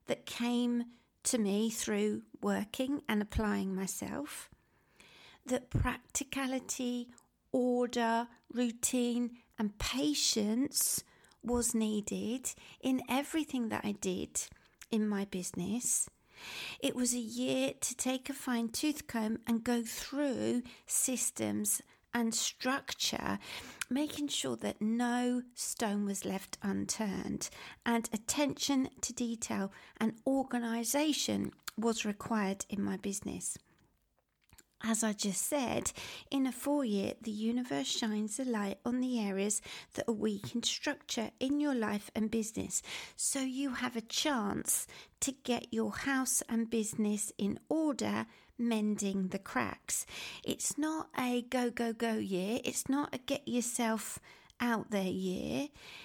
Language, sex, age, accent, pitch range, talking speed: English, female, 40-59, British, 215-260 Hz, 125 wpm